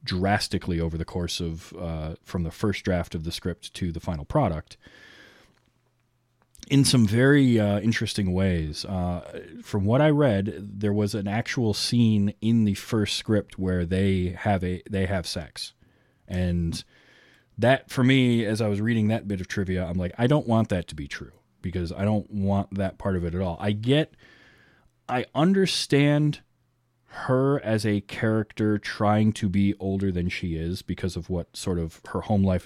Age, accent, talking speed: 30-49, American, 180 wpm